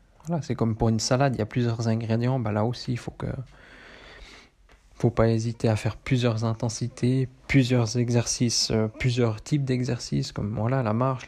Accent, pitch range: French, 110-125 Hz